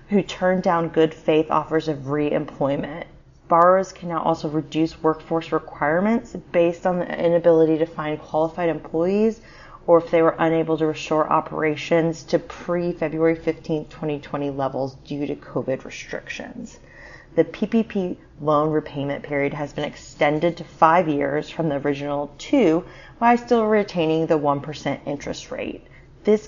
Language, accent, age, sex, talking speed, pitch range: English, American, 30-49, female, 140 wpm, 150-175 Hz